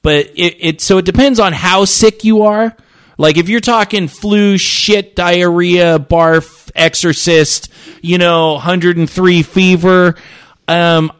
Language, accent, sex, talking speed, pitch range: English, American, male, 135 wpm, 115-170 Hz